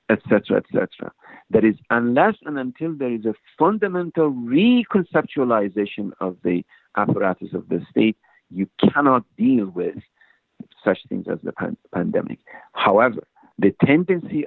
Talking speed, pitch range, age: 130 wpm, 95-150 Hz, 50-69